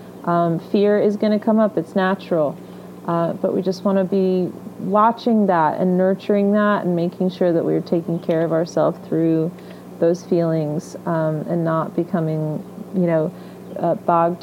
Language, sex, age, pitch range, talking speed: English, female, 30-49, 165-195 Hz, 175 wpm